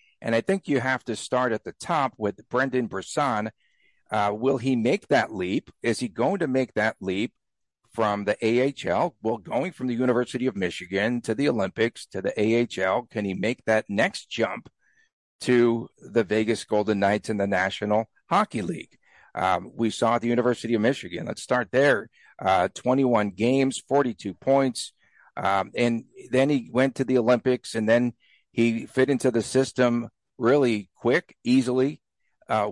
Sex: male